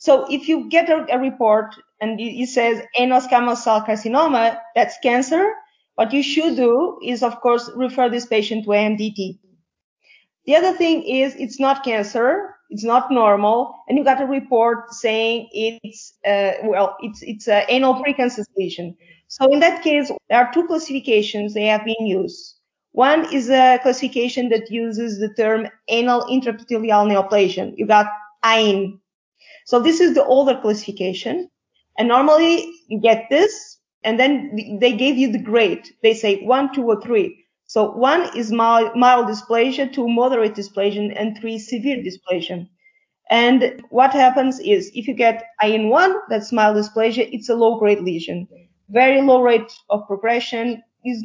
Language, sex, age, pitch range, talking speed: English, female, 20-39, 215-265 Hz, 160 wpm